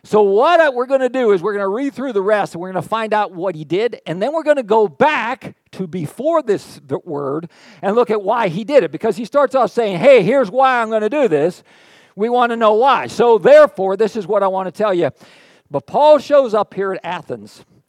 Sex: male